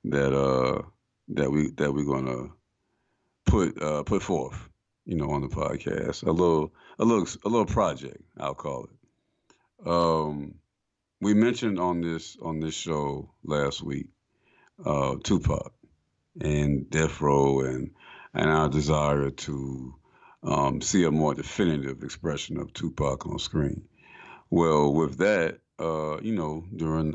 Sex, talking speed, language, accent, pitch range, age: male, 140 wpm, English, American, 70-80 Hz, 50-69